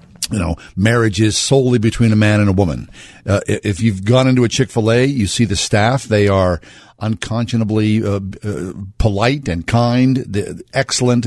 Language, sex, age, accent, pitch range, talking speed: English, male, 50-69, American, 100-125 Hz, 165 wpm